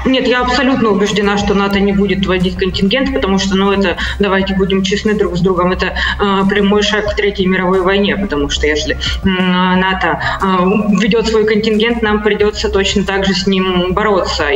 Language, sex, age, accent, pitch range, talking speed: Russian, female, 20-39, native, 185-210 Hz, 185 wpm